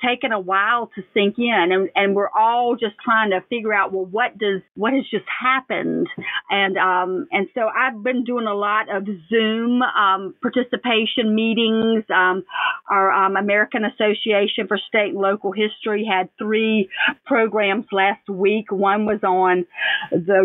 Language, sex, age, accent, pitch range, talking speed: English, female, 40-59, American, 195-240 Hz, 160 wpm